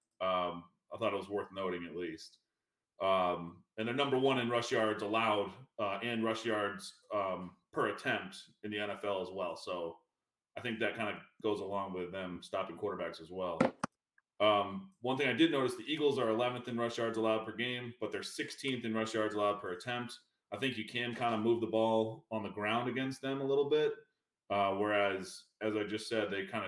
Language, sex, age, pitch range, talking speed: English, male, 30-49, 100-120 Hz, 210 wpm